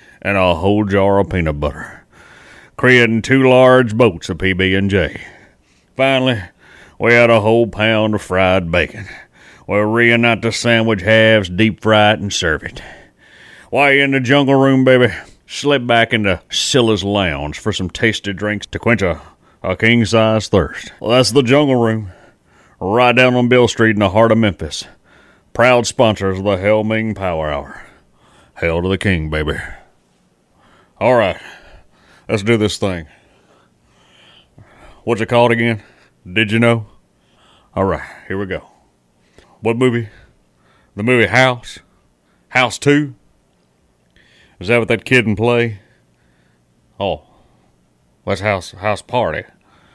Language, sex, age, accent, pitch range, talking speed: English, male, 40-59, American, 95-115 Hz, 150 wpm